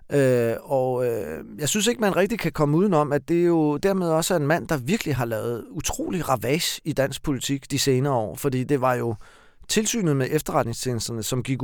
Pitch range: 120-155 Hz